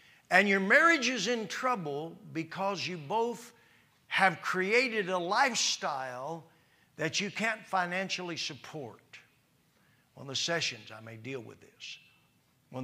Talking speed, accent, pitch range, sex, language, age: 125 wpm, American, 155-240 Hz, male, English, 50-69